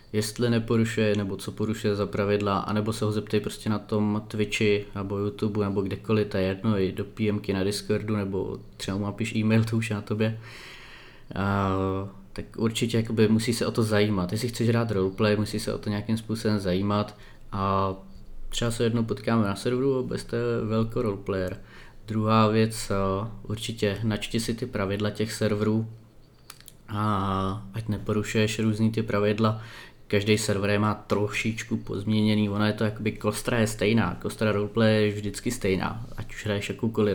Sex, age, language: male, 20-39, Czech